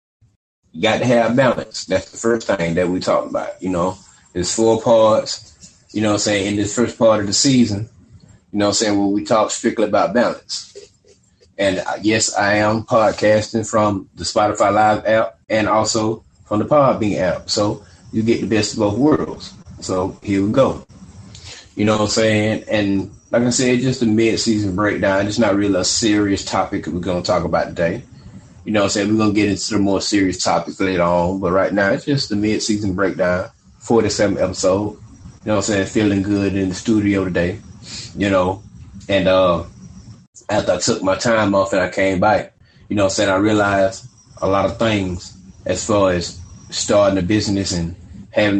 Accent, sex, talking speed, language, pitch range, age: American, male, 205 wpm, English, 95-110 Hz, 30-49